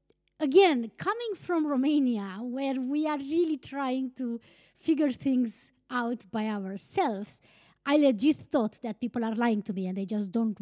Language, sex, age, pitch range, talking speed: English, female, 20-39, 215-285 Hz, 160 wpm